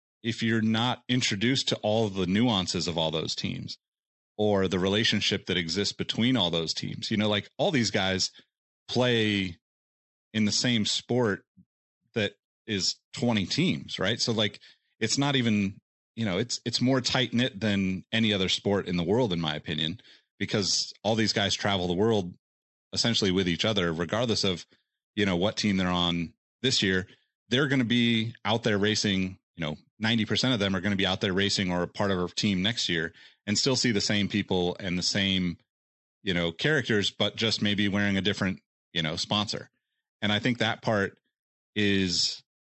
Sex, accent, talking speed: male, American, 190 wpm